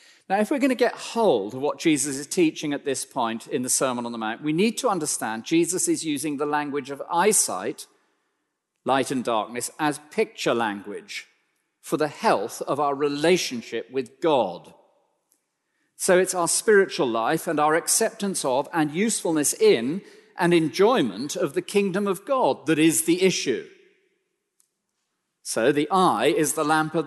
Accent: British